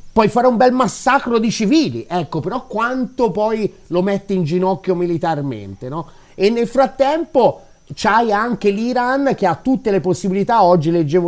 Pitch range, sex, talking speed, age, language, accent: 160-225 Hz, male, 160 wpm, 30-49, Italian, native